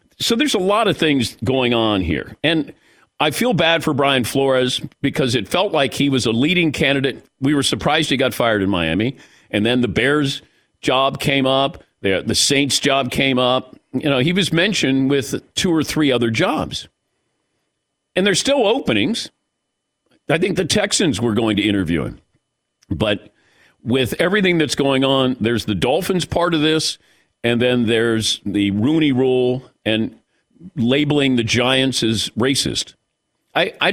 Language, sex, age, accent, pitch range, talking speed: English, male, 50-69, American, 125-160 Hz, 170 wpm